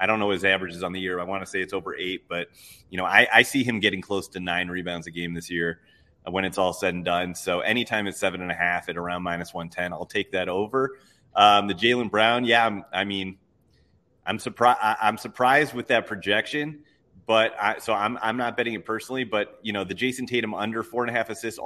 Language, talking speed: English, 240 wpm